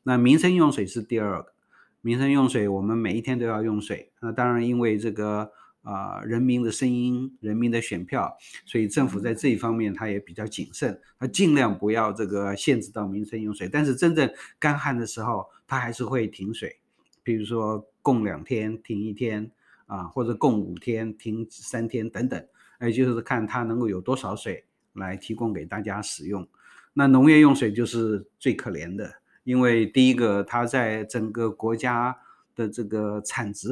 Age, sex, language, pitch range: 50-69, male, Chinese, 105-125 Hz